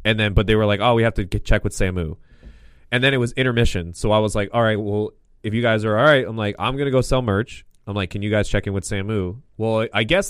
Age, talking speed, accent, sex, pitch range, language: 20-39, 305 wpm, American, male, 100-125 Hz, English